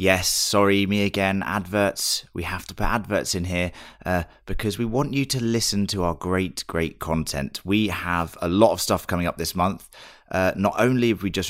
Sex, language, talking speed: male, English, 210 wpm